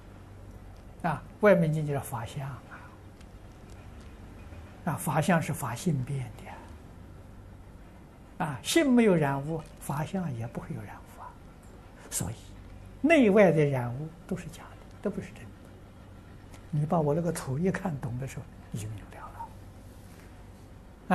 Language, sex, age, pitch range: Chinese, male, 60-79, 95-160 Hz